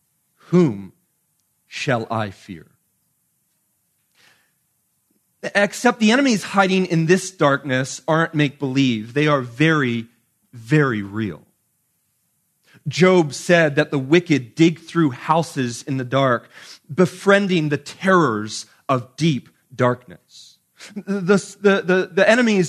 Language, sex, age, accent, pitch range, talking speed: English, male, 30-49, American, 140-190 Hz, 105 wpm